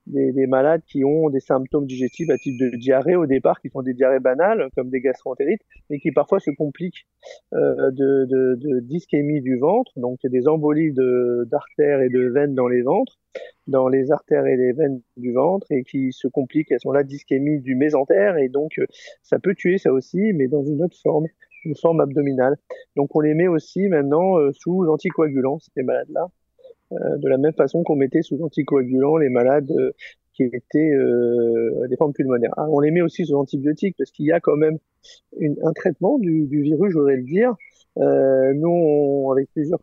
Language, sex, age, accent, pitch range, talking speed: French, male, 40-59, French, 135-160 Hz, 205 wpm